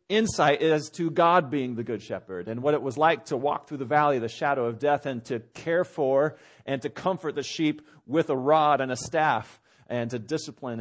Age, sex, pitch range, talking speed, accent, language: 40-59, male, 140-185 Hz, 230 wpm, American, English